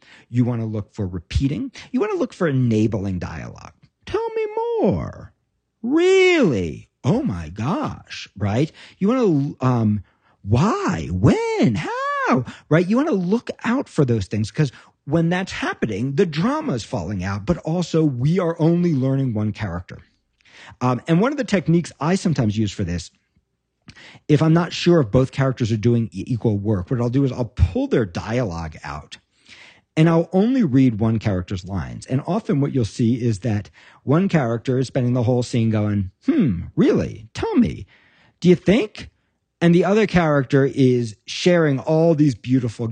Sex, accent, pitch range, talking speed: male, American, 110-170 Hz, 170 wpm